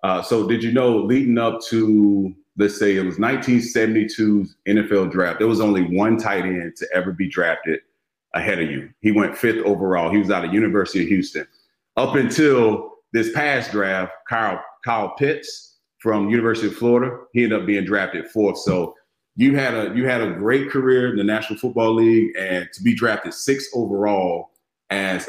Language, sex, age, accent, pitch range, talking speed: English, male, 30-49, American, 95-120 Hz, 185 wpm